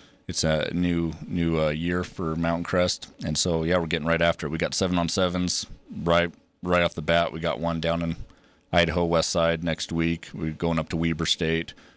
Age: 30-49